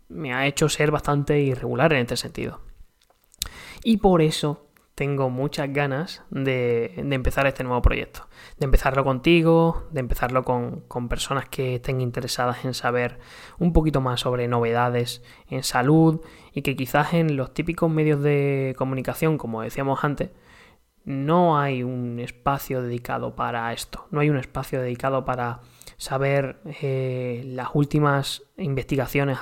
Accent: Spanish